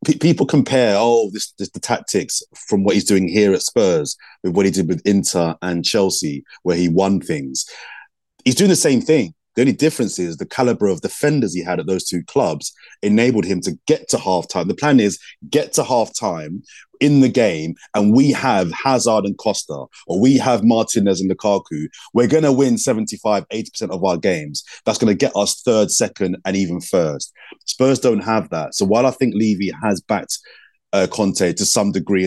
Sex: male